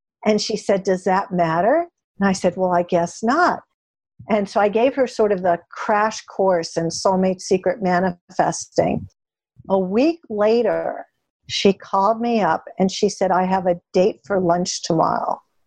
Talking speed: 170 wpm